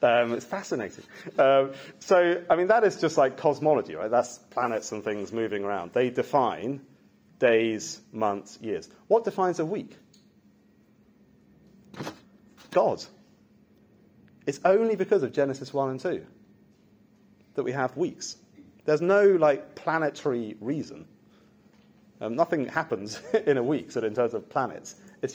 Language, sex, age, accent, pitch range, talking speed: English, male, 40-59, British, 120-200 Hz, 135 wpm